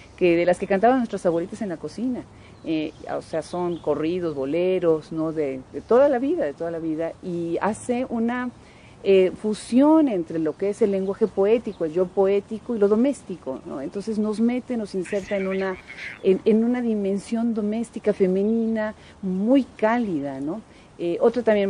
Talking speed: 175 wpm